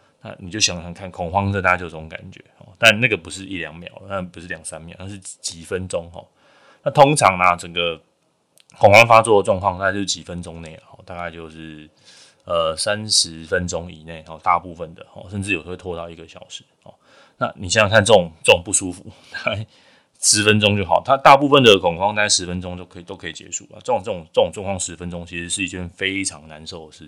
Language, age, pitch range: Chinese, 20-39, 85-100 Hz